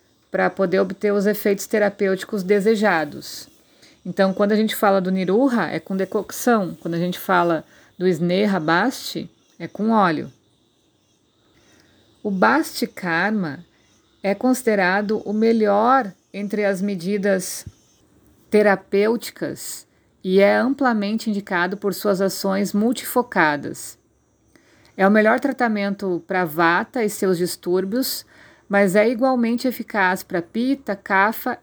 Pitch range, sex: 190-225 Hz, female